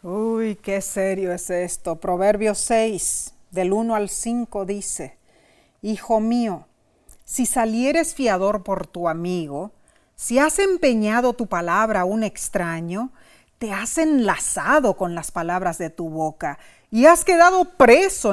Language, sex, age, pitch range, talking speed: Spanish, female, 40-59, 185-290 Hz, 135 wpm